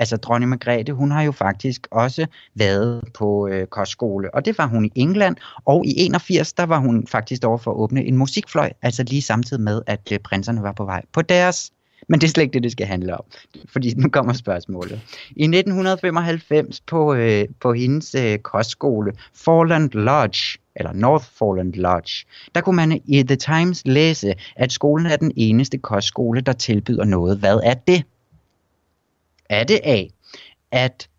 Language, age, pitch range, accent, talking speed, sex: Danish, 30-49, 115-160 Hz, native, 180 wpm, male